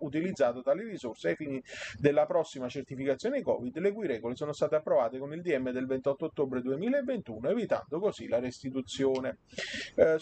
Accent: native